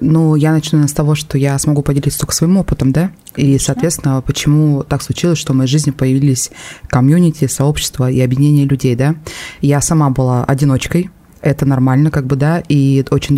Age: 20-39